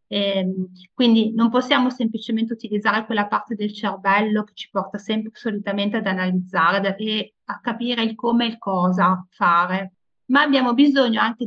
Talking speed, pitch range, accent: 150 wpm, 200-250 Hz, native